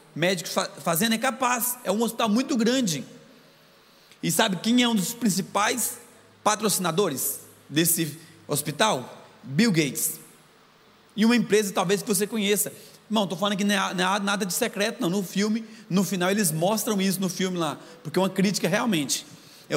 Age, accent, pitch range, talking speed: 30-49, Brazilian, 180-220 Hz, 165 wpm